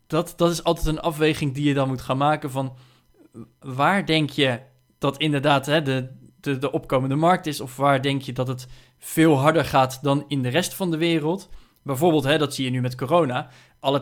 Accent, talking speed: Dutch, 215 wpm